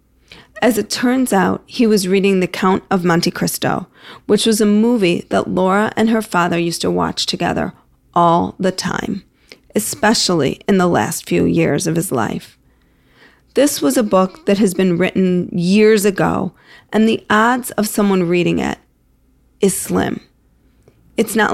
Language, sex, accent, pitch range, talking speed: English, female, American, 180-215 Hz, 160 wpm